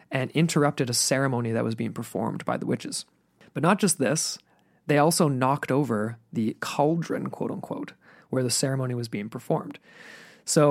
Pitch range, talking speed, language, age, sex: 120-140 Hz, 165 wpm, English, 20-39, male